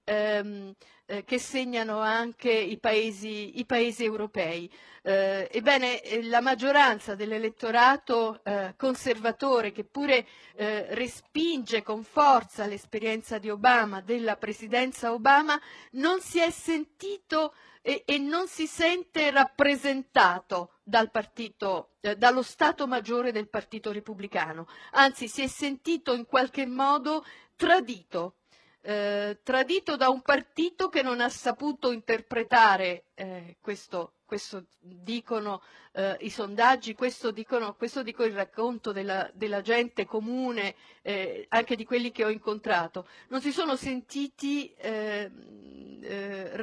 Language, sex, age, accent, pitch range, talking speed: Italian, female, 50-69, native, 215-275 Hz, 115 wpm